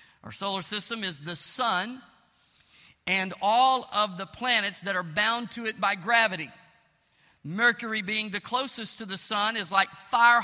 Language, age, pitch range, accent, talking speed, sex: English, 50-69, 205-255 Hz, American, 160 wpm, male